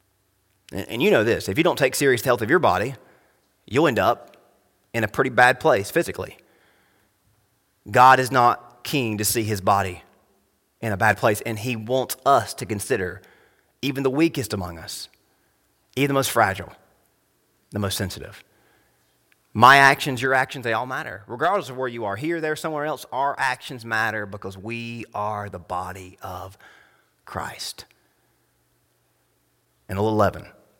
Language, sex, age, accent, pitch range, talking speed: English, male, 30-49, American, 100-135 Hz, 160 wpm